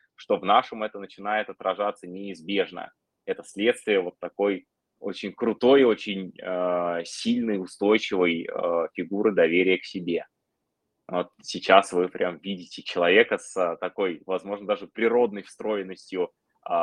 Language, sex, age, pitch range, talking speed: Russian, male, 20-39, 100-125 Hz, 120 wpm